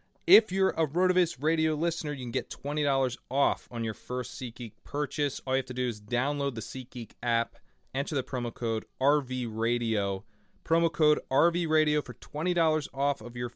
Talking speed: 175 wpm